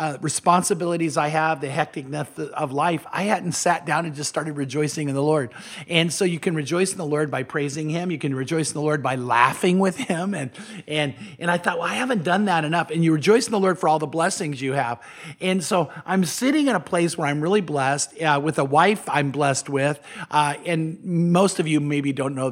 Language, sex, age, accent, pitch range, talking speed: English, male, 50-69, American, 145-180 Hz, 235 wpm